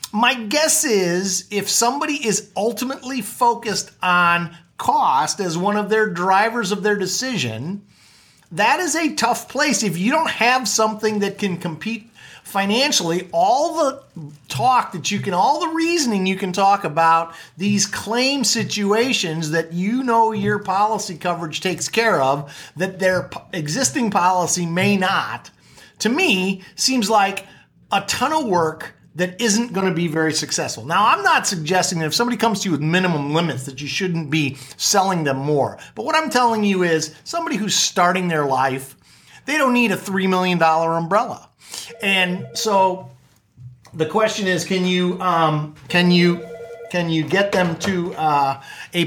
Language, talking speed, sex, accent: English, 165 wpm, male, American